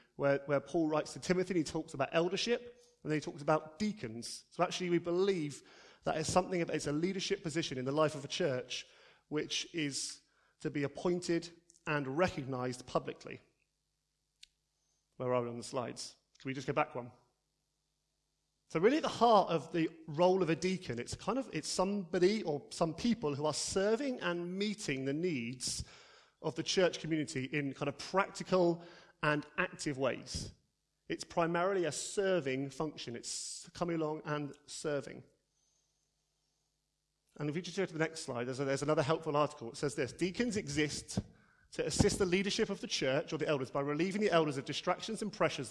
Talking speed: 175 wpm